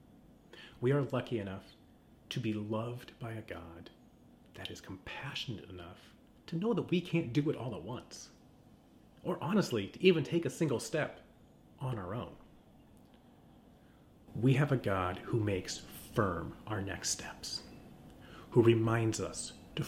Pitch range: 100-125 Hz